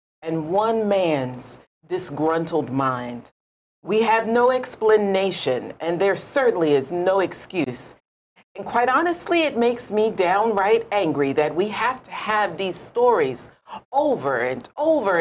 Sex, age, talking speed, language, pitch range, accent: female, 40-59, 130 wpm, English, 170-245 Hz, American